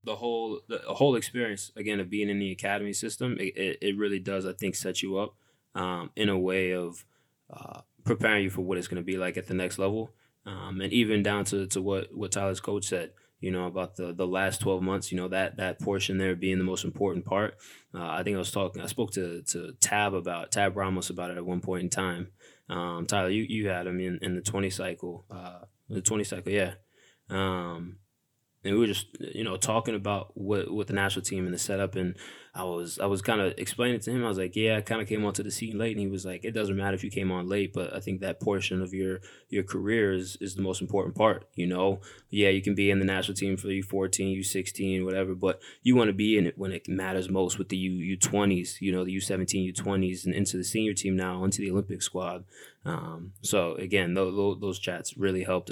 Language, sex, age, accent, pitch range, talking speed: English, male, 20-39, American, 95-100 Hz, 245 wpm